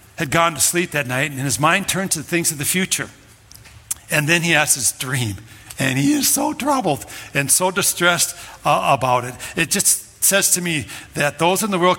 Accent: American